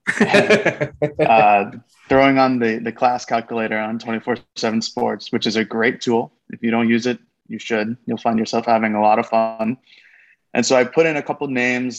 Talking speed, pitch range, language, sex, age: 195 wpm, 110-125 Hz, English, male, 20-39